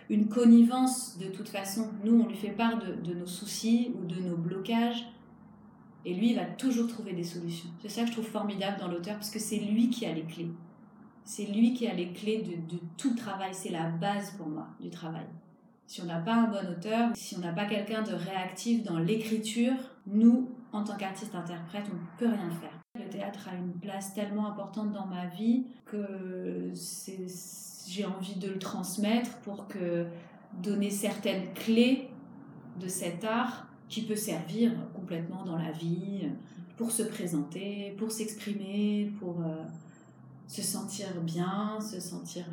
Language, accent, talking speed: French, French, 185 wpm